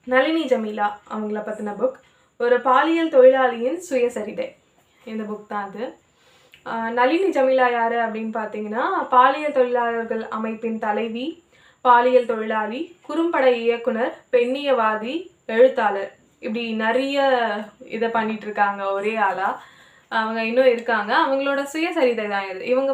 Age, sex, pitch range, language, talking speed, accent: 20-39, female, 225-265 Hz, Tamil, 110 wpm, native